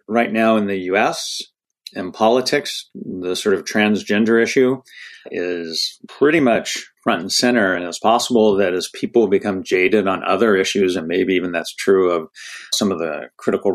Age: 40-59